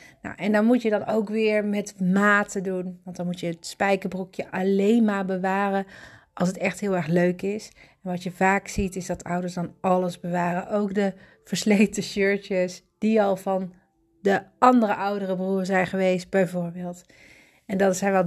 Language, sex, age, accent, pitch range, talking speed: Dutch, female, 30-49, Dutch, 185-230 Hz, 185 wpm